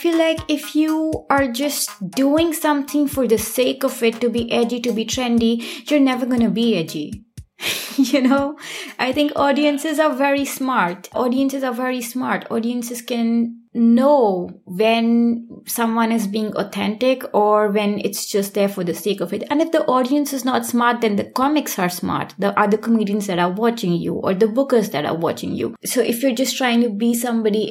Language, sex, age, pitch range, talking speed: German, female, 20-39, 200-255 Hz, 190 wpm